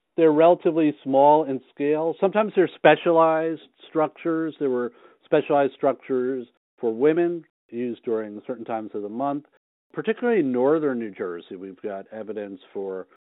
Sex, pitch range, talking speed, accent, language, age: male, 105-145 Hz, 140 wpm, American, English, 50-69